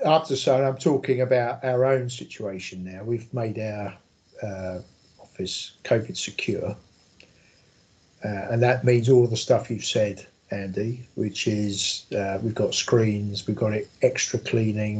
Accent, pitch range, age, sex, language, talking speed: British, 105-130 Hz, 50-69, male, English, 145 wpm